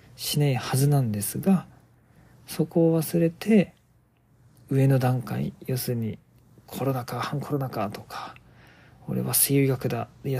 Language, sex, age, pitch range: Japanese, male, 40-59, 115-145 Hz